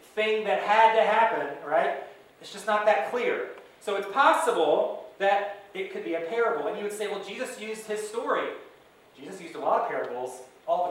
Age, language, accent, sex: 30-49, English, American, male